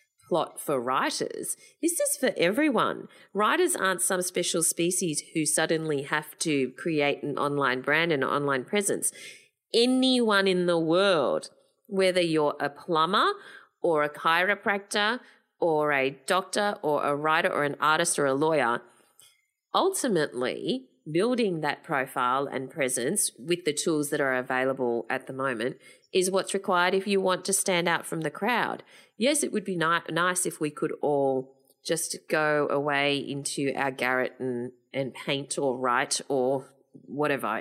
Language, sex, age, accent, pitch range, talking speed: English, female, 30-49, Australian, 145-200 Hz, 155 wpm